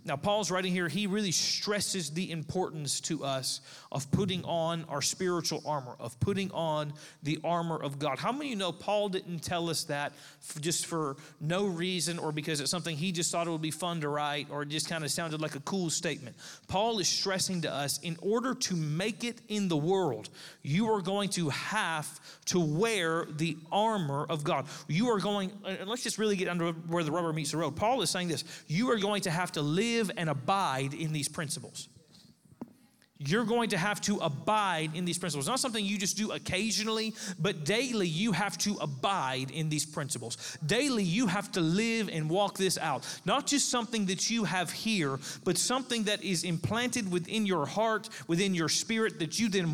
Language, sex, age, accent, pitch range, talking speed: English, male, 40-59, American, 155-205 Hz, 205 wpm